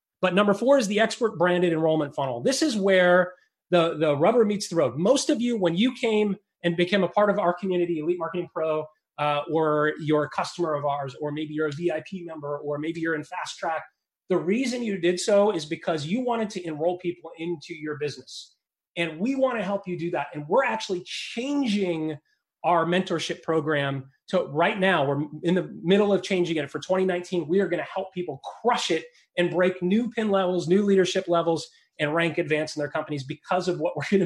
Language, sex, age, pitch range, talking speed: English, male, 30-49, 160-195 Hz, 215 wpm